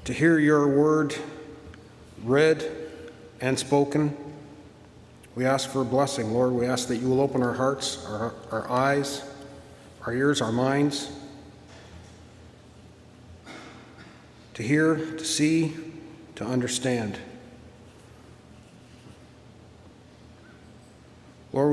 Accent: American